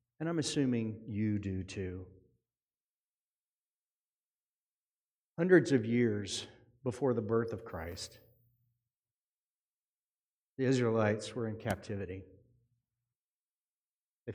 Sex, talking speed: male, 85 wpm